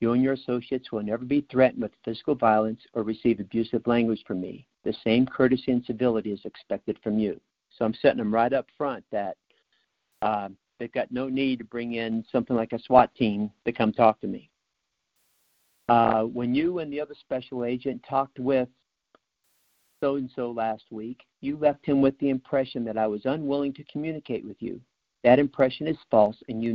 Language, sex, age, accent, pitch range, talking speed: English, male, 50-69, American, 115-130 Hz, 190 wpm